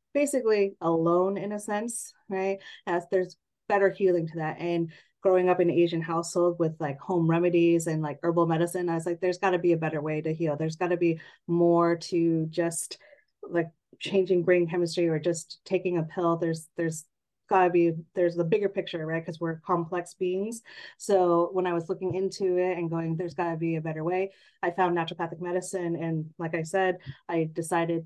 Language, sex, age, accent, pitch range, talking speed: English, female, 30-49, American, 165-190 Hz, 200 wpm